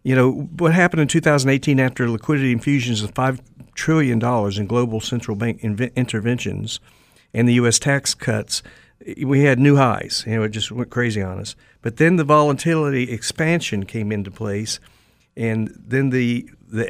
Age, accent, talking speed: 50-69, American, 165 wpm